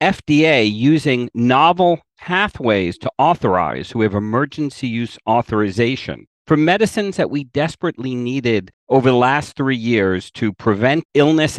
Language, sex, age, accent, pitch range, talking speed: English, male, 50-69, American, 105-145 Hz, 130 wpm